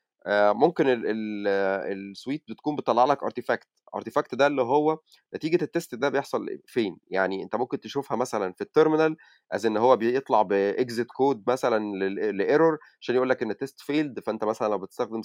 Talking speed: 155 wpm